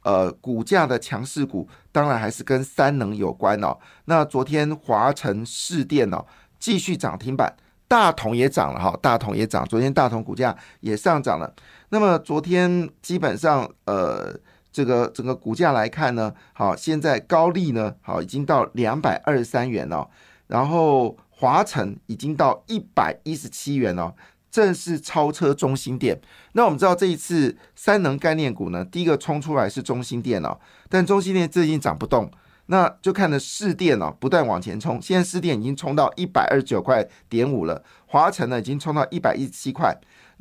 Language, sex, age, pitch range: Chinese, male, 50-69, 120-170 Hz